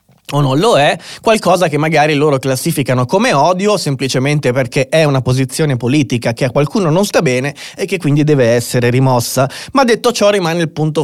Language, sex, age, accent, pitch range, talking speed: Italian, male, 20-39, native, 130-165 Hz, 190 wpm